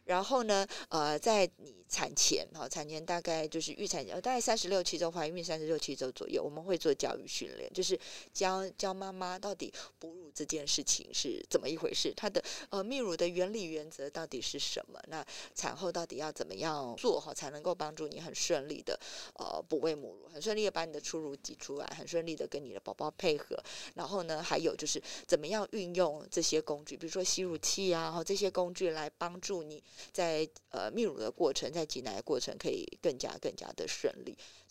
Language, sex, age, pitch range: Chinese, female, 20-39, 160-245 Hz